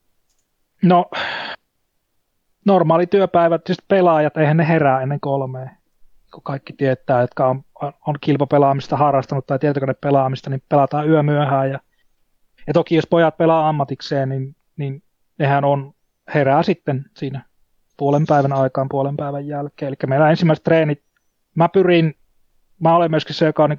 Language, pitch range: Finnish, 140-160 Hz